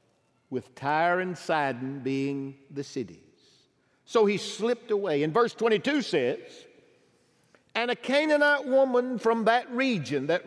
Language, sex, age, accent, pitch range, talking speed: English, male, 50-69, American, 155-230 Hz, 130 wpm